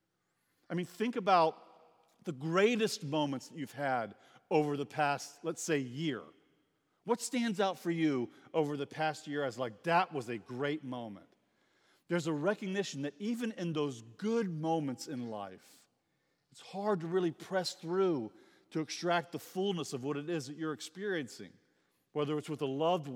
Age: 40-59